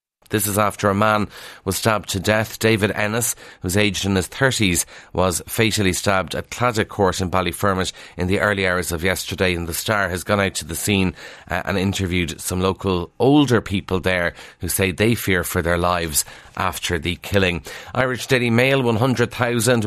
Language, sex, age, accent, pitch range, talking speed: English, male, 30-49, Irish, 95-115 Hz, 185 wpm